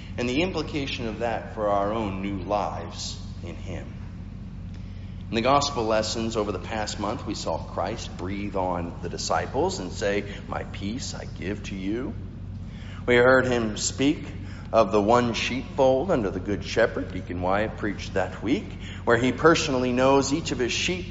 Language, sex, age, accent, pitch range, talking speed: English, male, 50-69, American, 95-125 Hz, 170 wpm